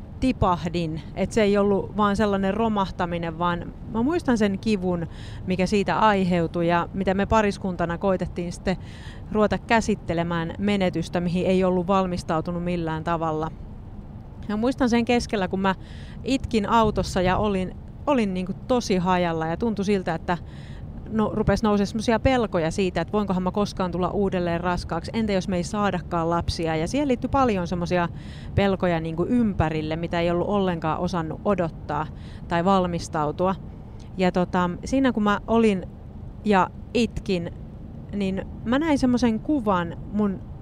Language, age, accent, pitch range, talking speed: Finnish, 30-49, native, 175-220 Hz, 145 wpm